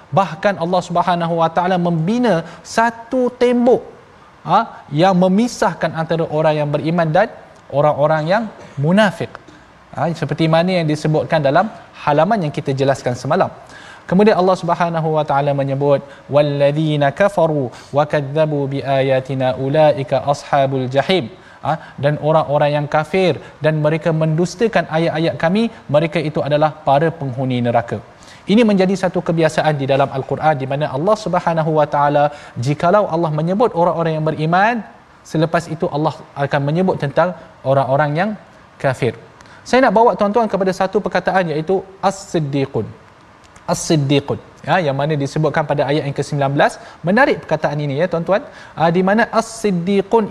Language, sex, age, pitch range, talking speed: Malayalam, male, 20-39, 145-185 Hz, 140 wpm